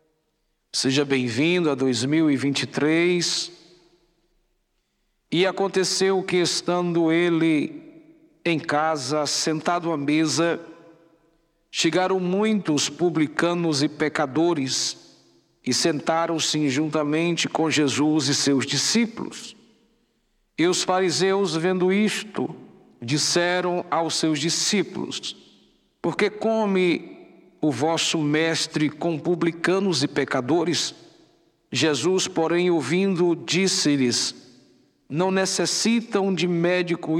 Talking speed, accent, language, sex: 85 wpm, Brazilian, Portuguese, male